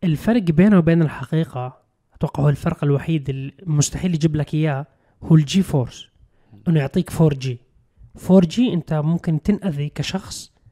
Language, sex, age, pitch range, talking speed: Arabic, male, 20-39, 150-190 Hz, 140 wpm